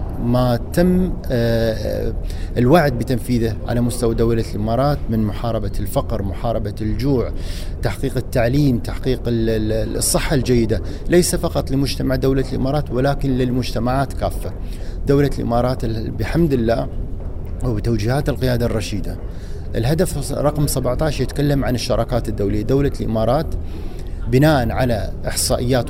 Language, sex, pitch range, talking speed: Arabic, male, 105-135 Hz, 105 wpm